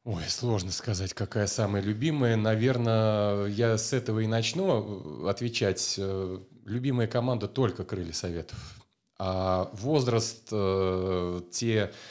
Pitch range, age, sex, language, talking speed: 105-125 Hz, 30-49, male, Russian, 105 wpm